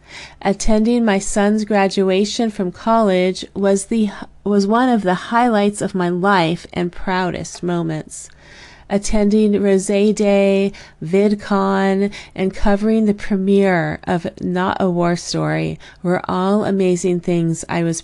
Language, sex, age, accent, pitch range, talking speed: English, female, 30-49, American, 170-205 Hz, 125 wpm